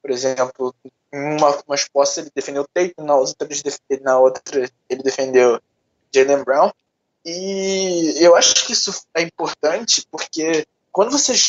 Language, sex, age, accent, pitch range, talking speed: Portuguese, male, 20-39, Brazilian, 140-200 Hz, 125 wpm